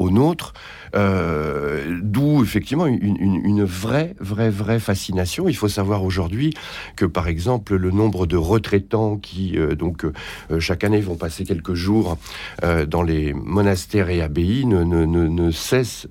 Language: French